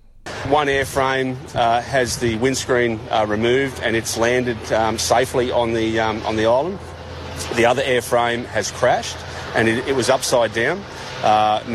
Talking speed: 160 wpm